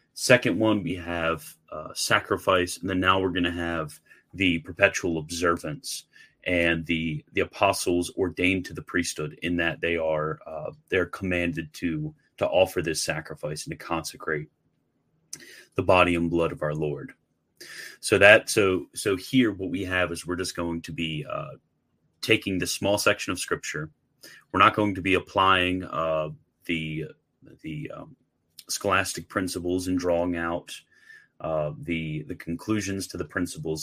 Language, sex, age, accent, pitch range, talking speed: English, male, 30-49, American, 85-95 Hz, 160 wpm